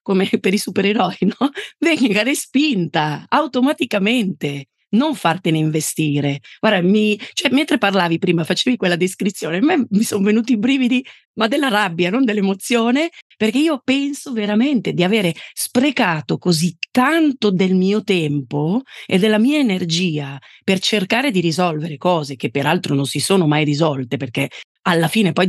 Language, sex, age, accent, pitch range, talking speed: Italian, female, 40-59, native, 160-215 Hz, 150 wpm